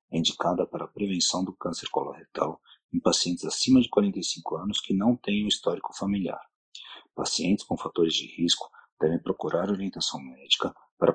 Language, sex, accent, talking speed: Portuguese, male, Brazilian, 160 wpm